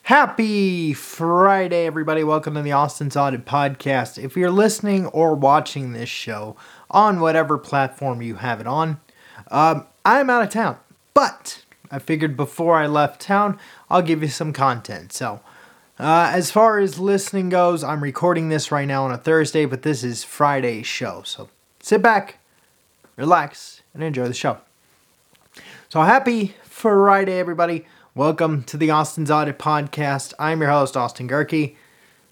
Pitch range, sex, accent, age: 140-190 Hz, male, American, 30-49